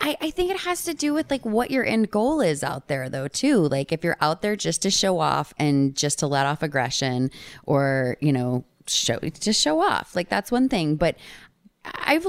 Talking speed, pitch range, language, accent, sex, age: 225 wpm, 135-185 Hz, English, American, female, 20-39